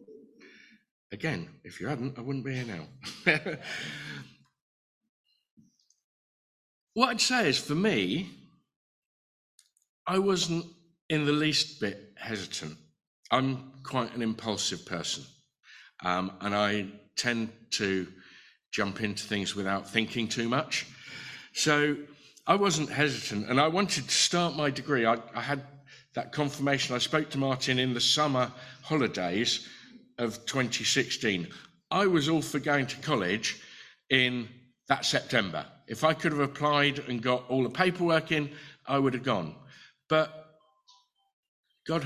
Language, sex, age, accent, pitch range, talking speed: English, male, 50-69, British, 120-160 Hz, 135 wpm